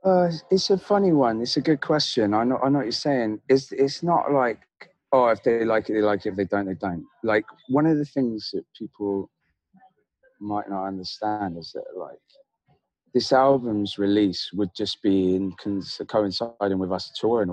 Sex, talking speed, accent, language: male, 195 wpm, British, English